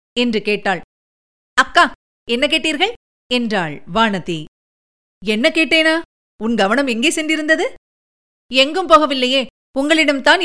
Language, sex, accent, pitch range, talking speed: Tamil, female, native, 235-280 Hz, 85 wpm